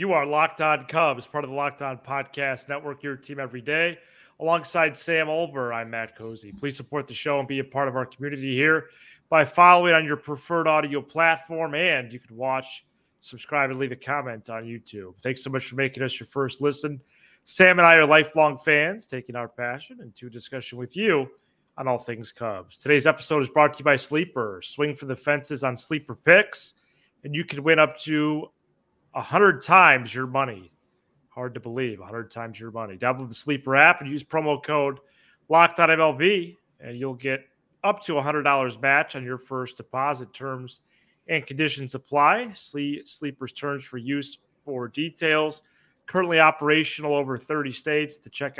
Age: 30-49